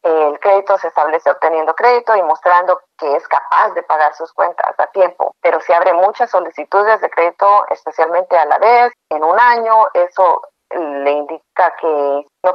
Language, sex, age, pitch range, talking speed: English, female, 40-59, 165-190 Hz, 170 wpm